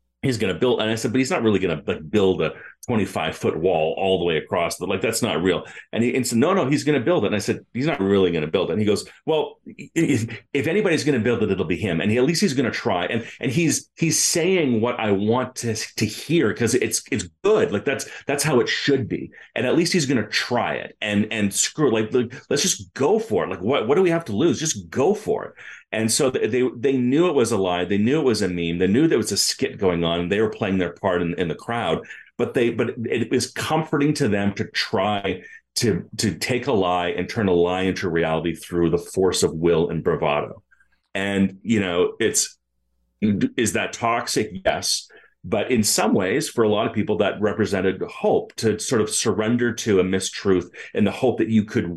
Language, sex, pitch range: English, male, 90-125 Hz